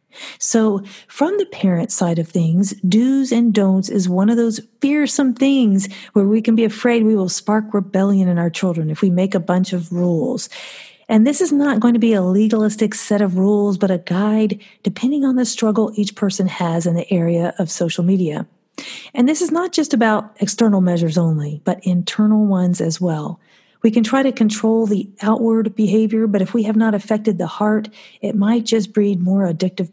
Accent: American